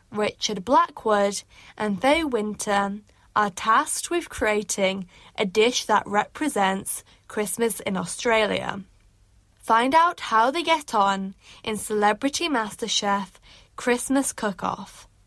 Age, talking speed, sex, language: 10-29, 105 wpm, female, English